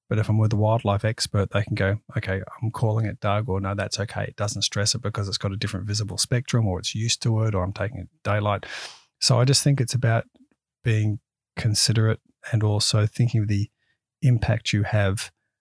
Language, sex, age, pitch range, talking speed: English, male, 30-49, 100-120 Hz, 215 wpm